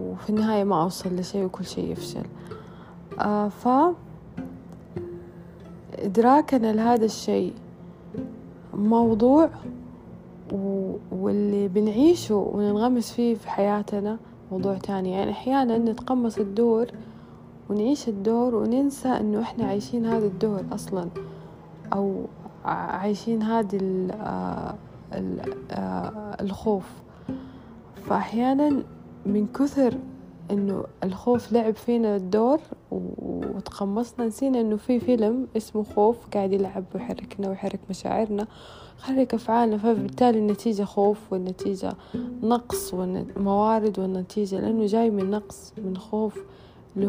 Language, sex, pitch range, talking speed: Arabic, female, 190-230 Hz, 95 wpm